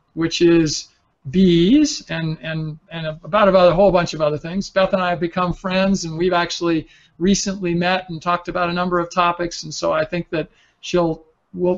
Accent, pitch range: American, 165-190 Hz